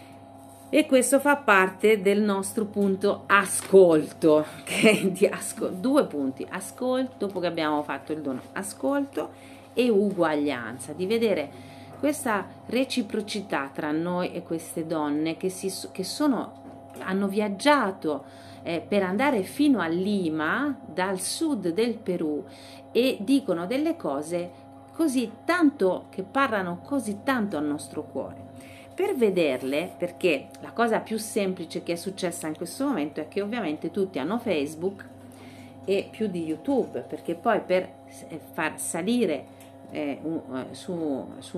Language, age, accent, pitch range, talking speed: Italian, 40-59, native, 150-215 Hz, 135 wpm